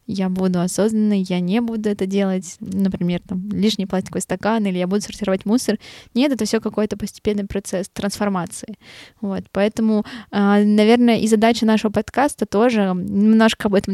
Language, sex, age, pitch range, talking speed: Russian, female, 20-39, 190-220 Hz, 155 wpm